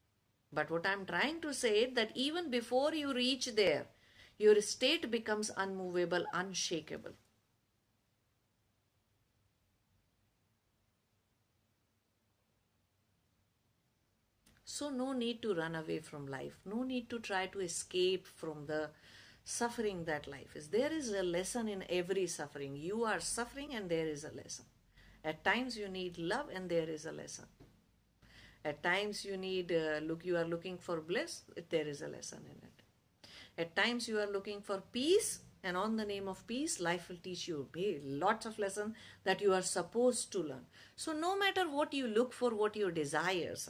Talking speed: 160 wpm